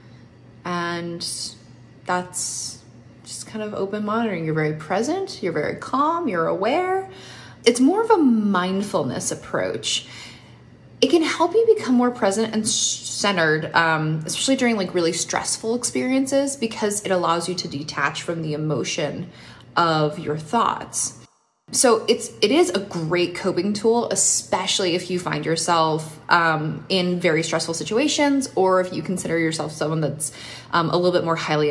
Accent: American